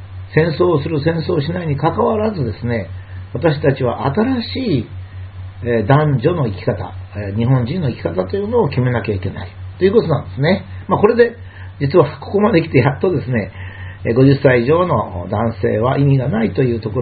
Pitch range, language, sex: 95-150 Hz, Japanese, male